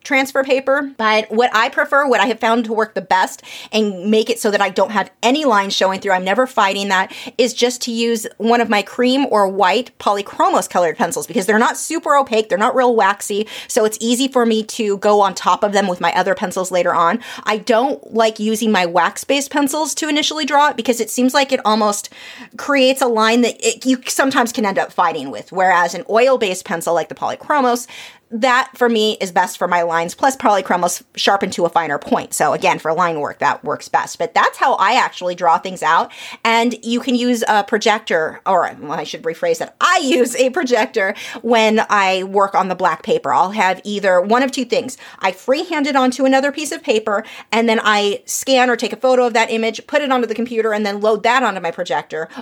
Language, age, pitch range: English, 30-49, 200-255 Hz